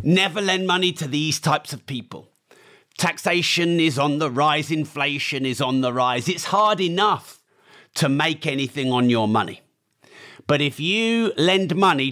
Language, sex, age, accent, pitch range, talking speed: English, male, 40-59, British, 145-195 Hz, 160 wpm